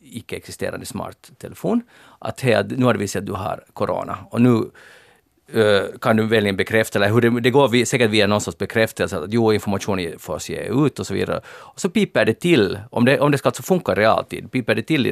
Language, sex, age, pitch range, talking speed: Swedish, male, 40-59, 105-135 Hz, 220 wpm